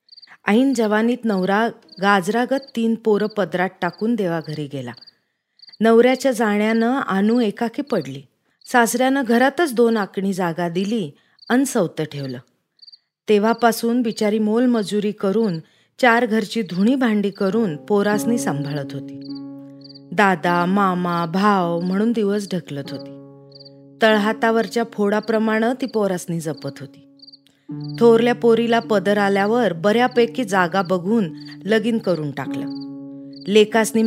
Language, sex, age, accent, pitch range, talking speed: Marathi, female, 30-49, native, 170-235 Hz, 110 wpm